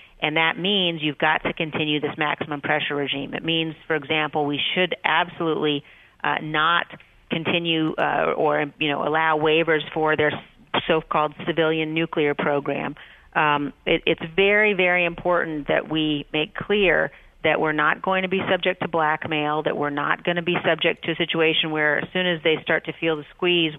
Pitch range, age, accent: 150-170 Hz, 40-59, American